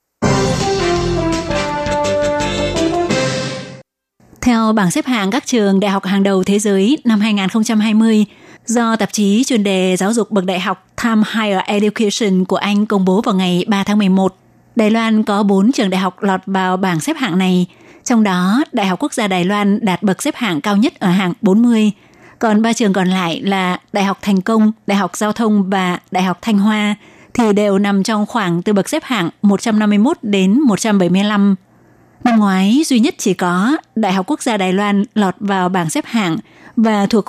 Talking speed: 185 wpm